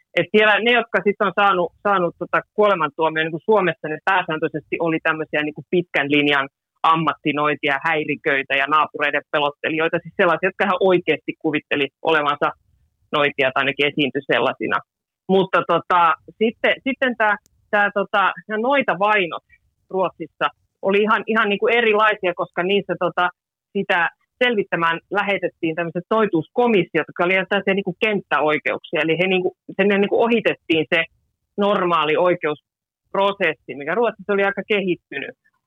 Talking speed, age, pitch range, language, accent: 130 wpm, 30-49, 155-200 Hz, Finnish, native